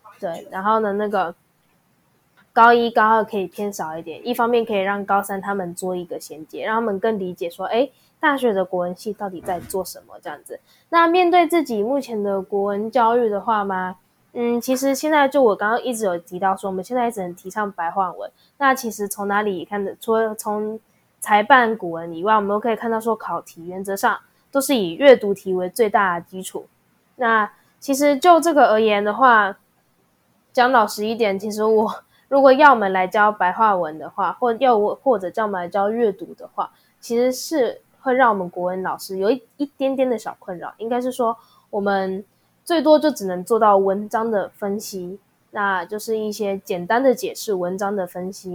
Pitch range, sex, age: 185-235 Hz, female, 10-29